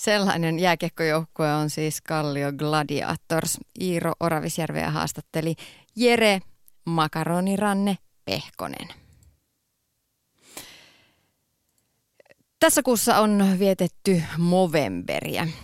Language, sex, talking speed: Finnish, female, 65 wpm